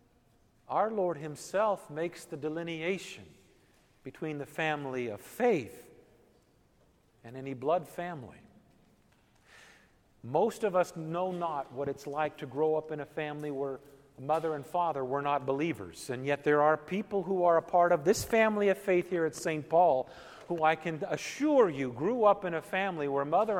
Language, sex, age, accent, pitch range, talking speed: English, male, 50-69, American, 135-190 Hz, 170 wpm